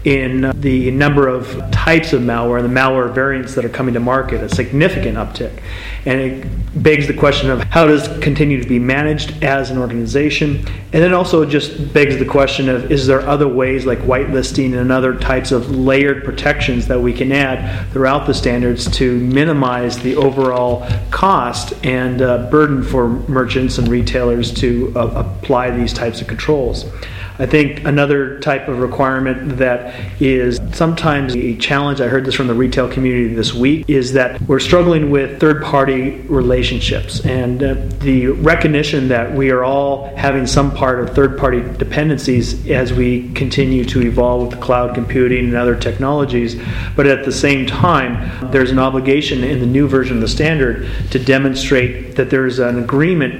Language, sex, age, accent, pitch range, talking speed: English, male, 30-49, American, 120-140 Hz, 170 wpm